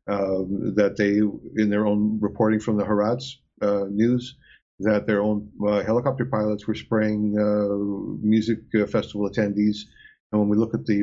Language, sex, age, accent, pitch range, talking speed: English, male, 50-69, American, 100-115 Hz, 170 wpm